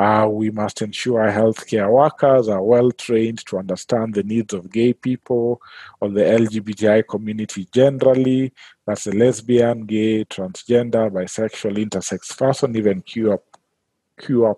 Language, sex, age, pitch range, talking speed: English, male, 40-59, 100-120 Hz, 125 wpm